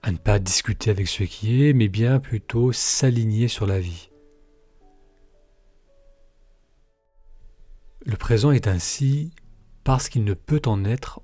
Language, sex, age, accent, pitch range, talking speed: French, male, 40-59, French, 95-135 Hz, 135 wpm